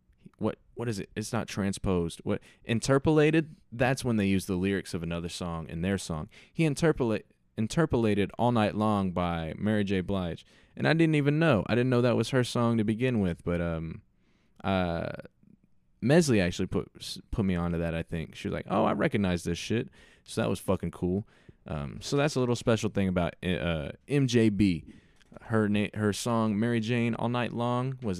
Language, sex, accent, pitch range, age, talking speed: English, male, American, 85-115 Hz, 20-39, 195 wpm